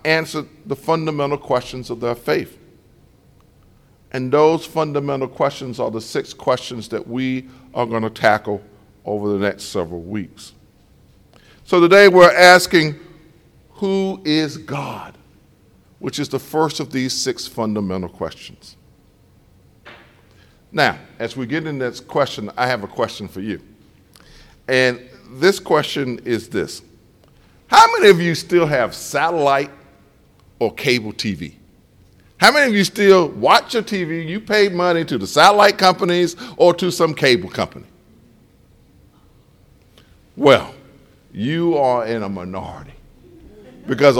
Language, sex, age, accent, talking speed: English, male, 50-69, American, 130 wpm